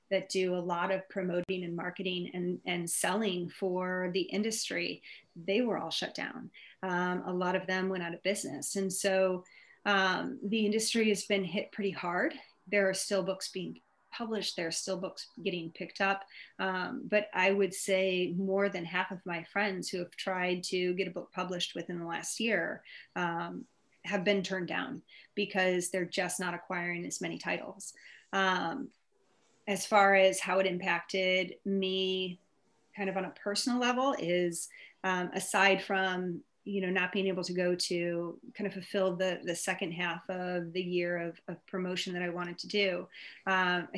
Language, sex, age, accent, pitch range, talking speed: English, female, 30-49, American, 180-195 Hz, 180 wpm